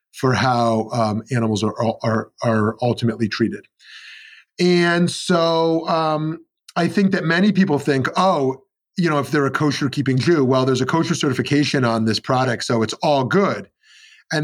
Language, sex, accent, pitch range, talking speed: English, male, American, 115-150 Hz, 165 wpm